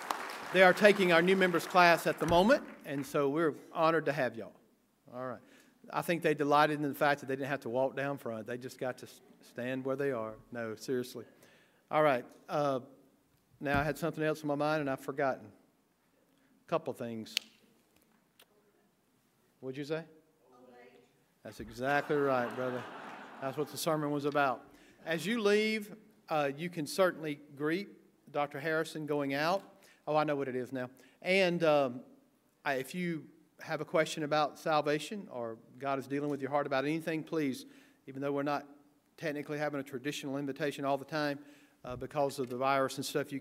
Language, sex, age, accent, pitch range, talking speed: English, male, 50-69, American, 135-165 Hz, 185 wpm